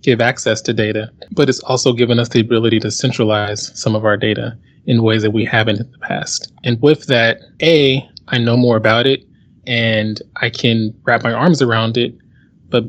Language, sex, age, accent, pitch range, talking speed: English, male, 20-39, American, 110-125 Hz, 200 wpm